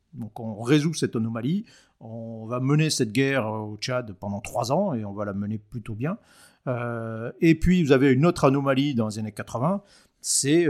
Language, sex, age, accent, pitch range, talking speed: French, male, 50-69, French, 110-145 Hz, 195 wpm